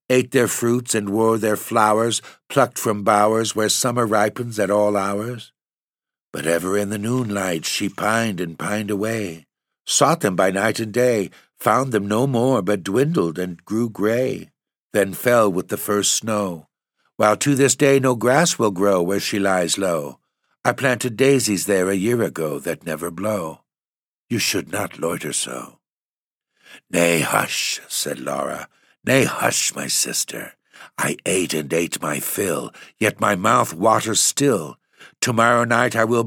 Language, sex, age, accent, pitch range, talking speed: English, male, 60-79, American, 100-125 Hz, 160 wpm